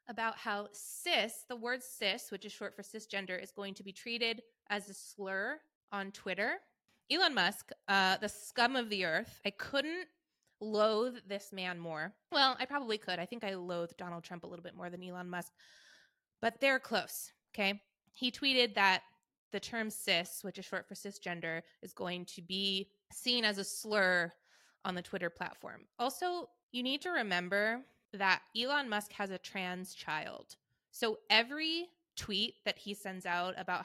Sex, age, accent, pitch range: female, 20-39, American, 185-230 Hz